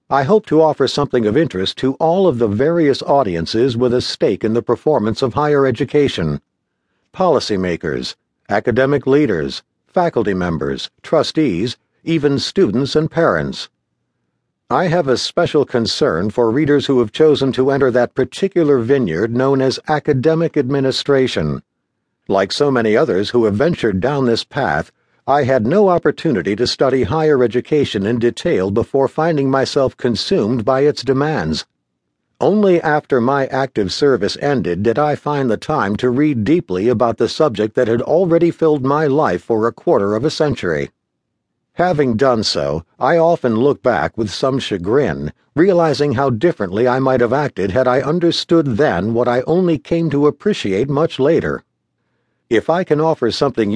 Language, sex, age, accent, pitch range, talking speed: English, male, 60-79, American, 115-150 Hz, 155 wpm